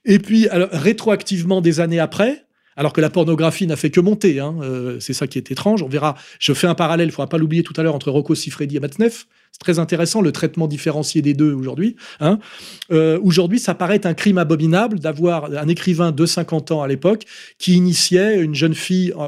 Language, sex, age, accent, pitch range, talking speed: French, male, 30-49, French, 150-195 Hz, 225 wpm